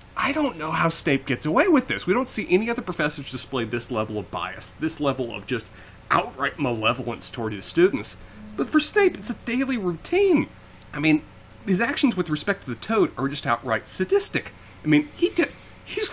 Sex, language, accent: male, English, American